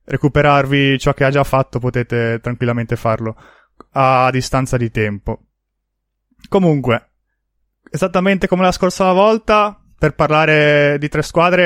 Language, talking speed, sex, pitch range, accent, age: Italian, 125 wpm, male, 135-160 Hz, native, 20-39